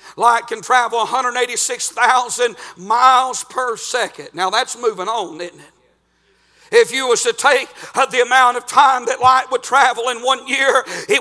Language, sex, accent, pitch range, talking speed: English, male, American, 245-290 Hz, 160 wpm